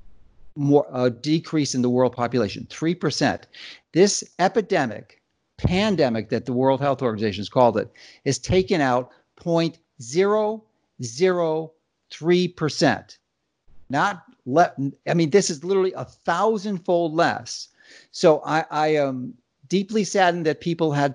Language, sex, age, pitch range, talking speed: English, male, 50-69, 135-185 Hz, 125 wpm